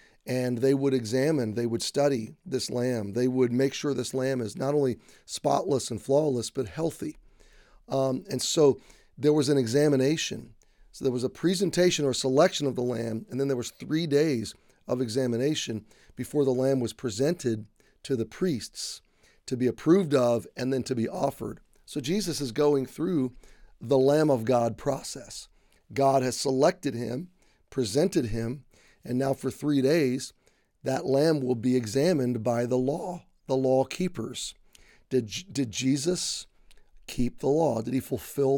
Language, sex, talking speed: English, male, 165 wpm